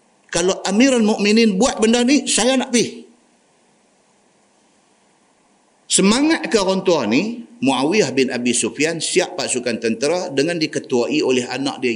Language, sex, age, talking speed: Malay, male, 50-69, 120 wpm